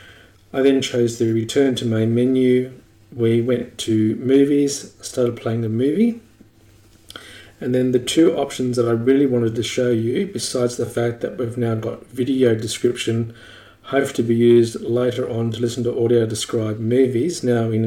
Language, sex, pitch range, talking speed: English, male, 115-125 Hz, 170 wpm